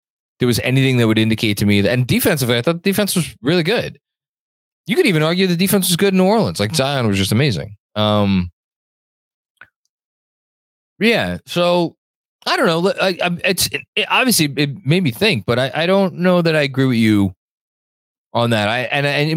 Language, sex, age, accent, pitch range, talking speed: English, male, 20-39, American, 95-145 Hz, 195 wpm